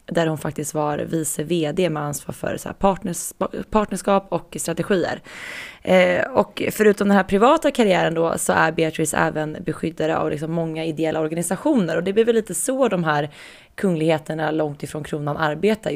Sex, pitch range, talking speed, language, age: female, 155-195 Hz, 150 wpm, Swedish, 20-39